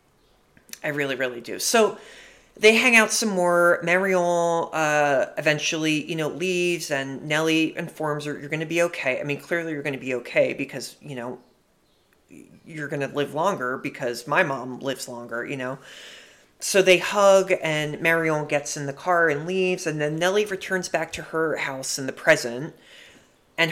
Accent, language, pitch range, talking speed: American, English, 135-175 Hz, 180 wpm